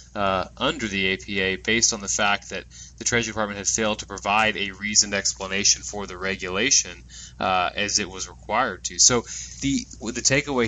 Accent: American